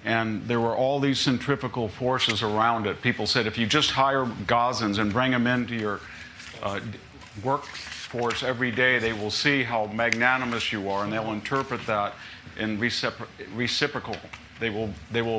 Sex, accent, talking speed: male, American, 165 wpm